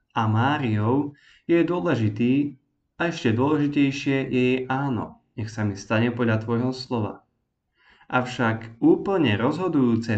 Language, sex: Slovak, male